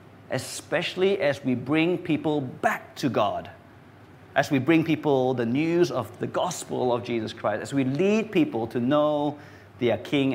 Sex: male